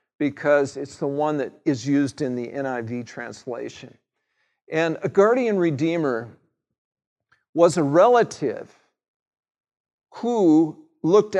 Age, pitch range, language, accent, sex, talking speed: 50-69, 145-195 Hz, English, American, male, 105 wpm